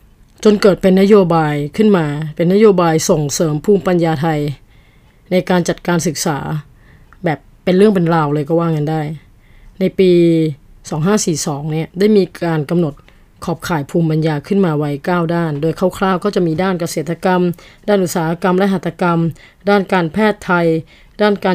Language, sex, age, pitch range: Thai, female, 20-39, 160-190 Hz